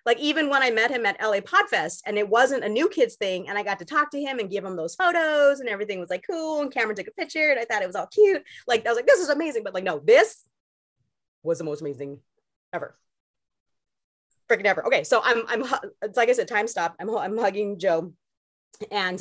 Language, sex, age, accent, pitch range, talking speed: English, female, 30-49, American, 200-300 Hz, 245 wpm